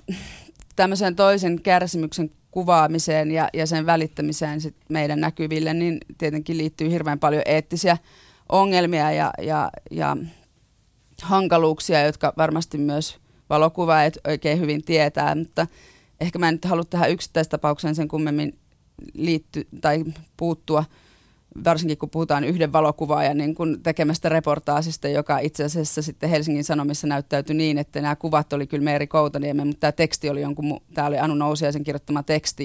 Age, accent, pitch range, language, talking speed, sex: 30-49, native, 145-165 Hz, Finnish, 140 wpm, female